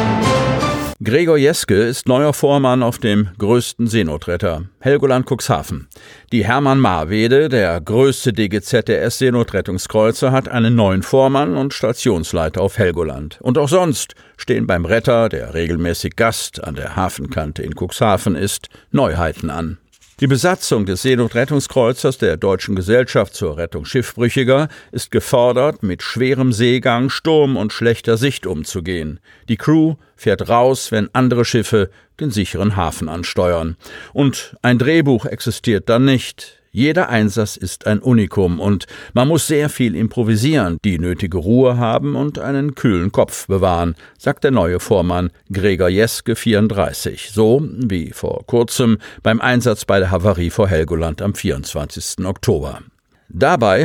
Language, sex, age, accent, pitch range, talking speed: German, male, 50-69, German, 95-130 Hz, 135 wpm